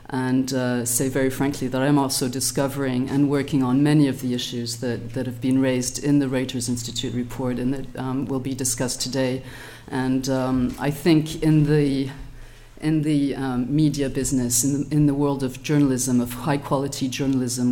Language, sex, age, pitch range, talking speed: English, female, 40-59, 125-140 Hz, 185 wpm